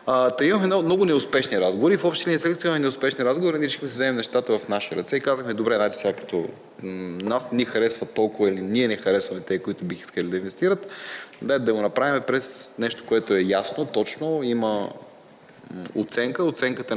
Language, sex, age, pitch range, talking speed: Bulgarian, male, 30-49, 105-135 Hz, 185 wpm